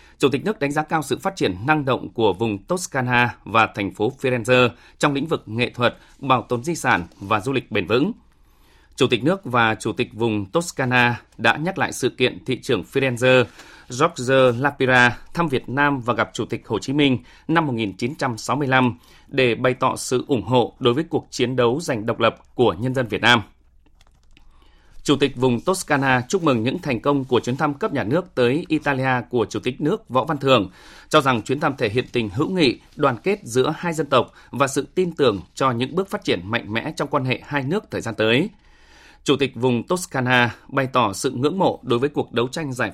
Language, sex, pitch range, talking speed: Vietnamese, male, 120-145 Hz, 215 wpm